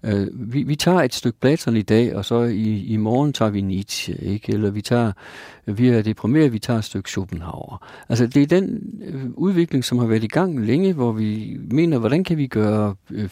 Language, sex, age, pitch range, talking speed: Danish, male, 50-69, 105-140 Hz, 210 wpm